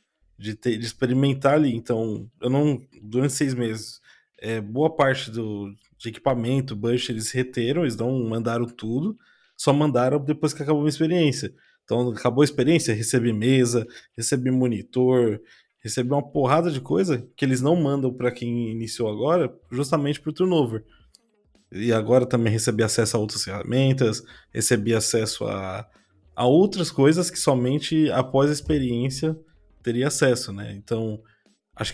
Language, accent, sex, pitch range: Portuguese, Brazilian, male, 115-150 Hz